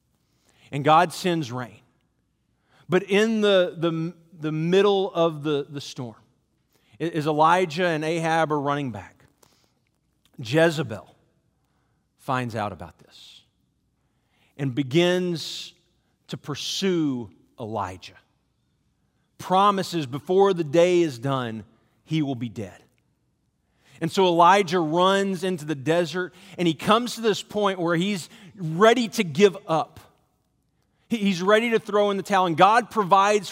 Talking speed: 125 wpm